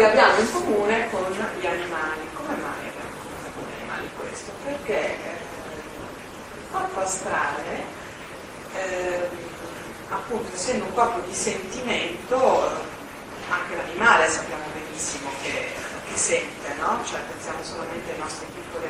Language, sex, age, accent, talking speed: Italian, female, 40-59, native, 125 wpm